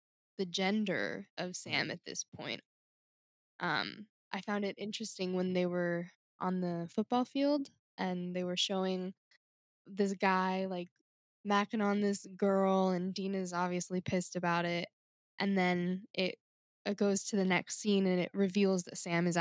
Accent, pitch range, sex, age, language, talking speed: American, 180-215 Hz, female, 10-29, English, 160 wpm